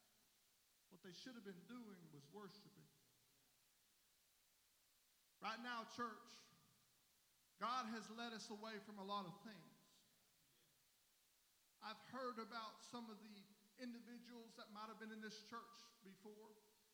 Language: English